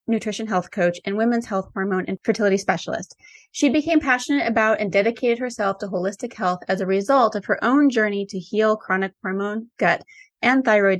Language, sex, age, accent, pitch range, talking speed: English, female, 20-39, American, 190-235 Hz, 185 wpm